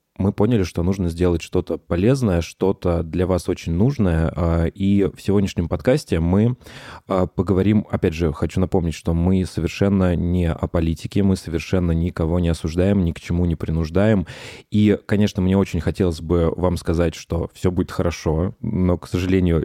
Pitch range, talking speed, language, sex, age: 85-100 Hz, 160 wpm, Russian, male, 20-39